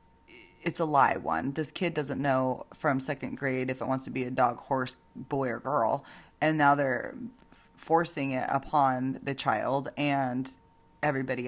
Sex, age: female, 30-49